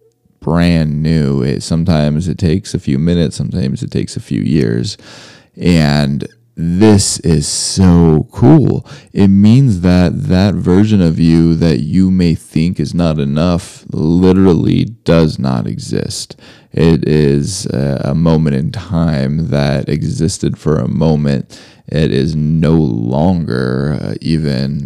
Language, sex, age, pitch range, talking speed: English, male, 20-39, 75-85 Hz, 130 wpm